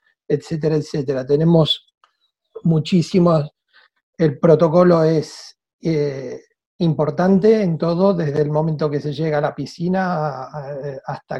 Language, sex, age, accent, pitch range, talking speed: English, male, 40-59, Argentinian, 150-185 Hz, 110 wpm